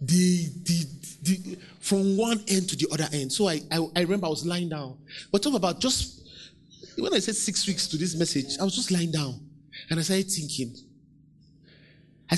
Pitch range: 155-210 Hz